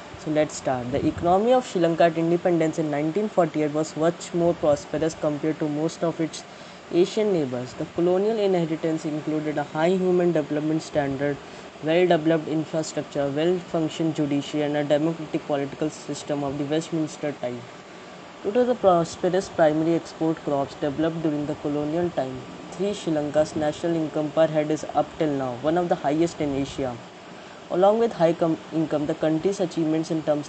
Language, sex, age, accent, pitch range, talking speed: English, female, 20-39, Indian, 150-175 Hz, 165 wpm